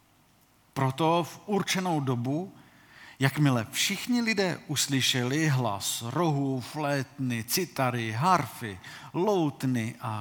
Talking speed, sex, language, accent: 90 wpm, male, Czech, native